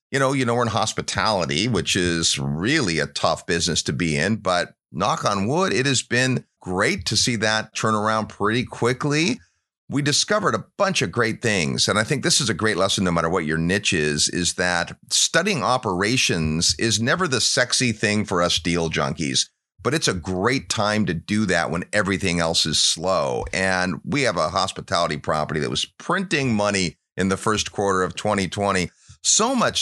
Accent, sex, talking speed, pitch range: American, male, 195 wpm, 90-125 Hz